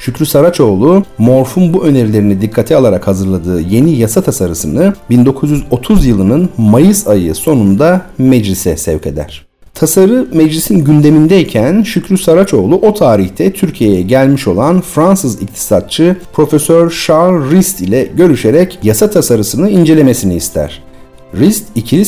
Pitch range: 100-165 Hz